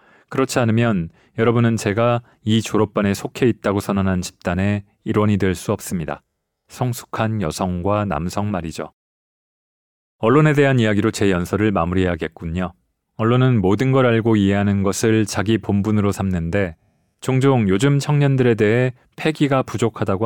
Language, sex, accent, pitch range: Korean, male, native, 95-125 Hz